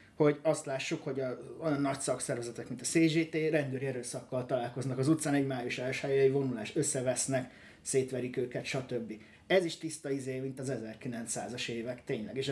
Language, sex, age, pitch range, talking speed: Hungarian, male, 30-49, 125-150 Hz, 160 wpm